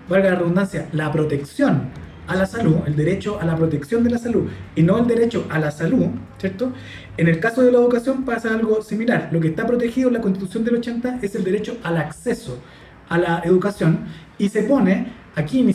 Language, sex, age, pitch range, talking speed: Spanish, male, 30-49, 165-230 Hz, 210 wpm